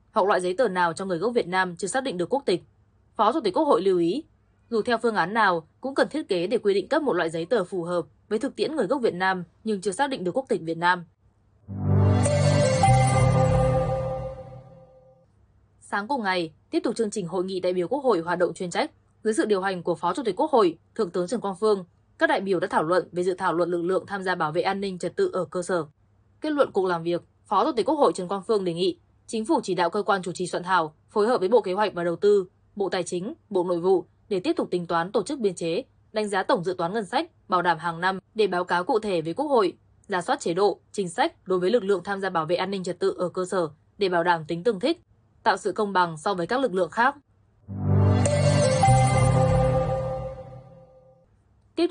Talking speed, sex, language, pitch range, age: 255 wpm, female, Vietnamese, 165-210 Hz, 20-39